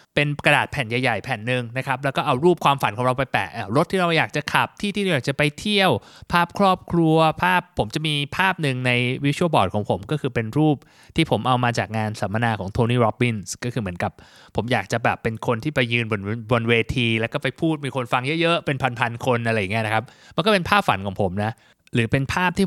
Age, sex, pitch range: 20-39, male, 120-160 Hz